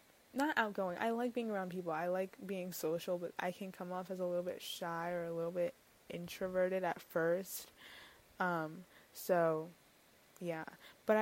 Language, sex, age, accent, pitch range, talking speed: English, female, 20-39, American, 175-205 Hz, 170 wpm